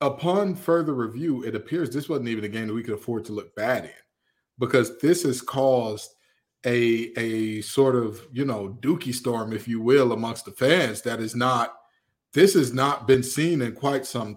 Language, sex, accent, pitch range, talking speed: English, male, American, 120-145 Hz, 195 wpm